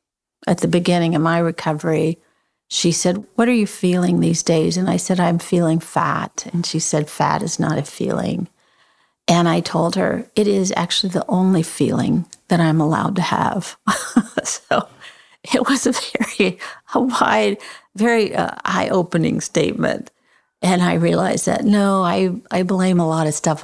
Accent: American